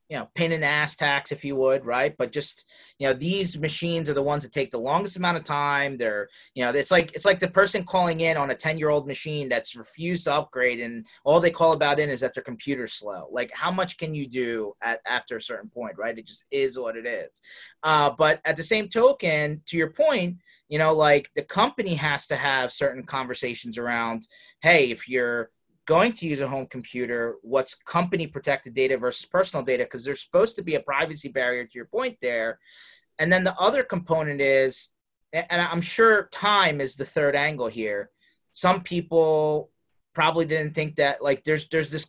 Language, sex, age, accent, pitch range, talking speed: English, male, 30-49, American, 135-170 Hz, 210 wpm